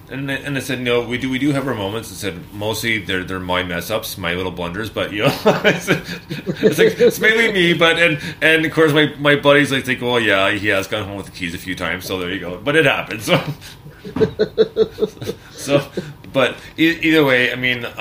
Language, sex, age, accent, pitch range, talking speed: English, male, 30-49, American, 90-125 Hz, 225 wpm